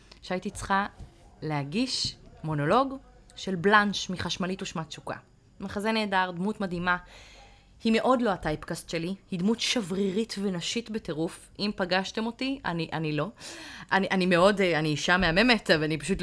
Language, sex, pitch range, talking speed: Hebrew, female, 165-225 Hz, 140 wpm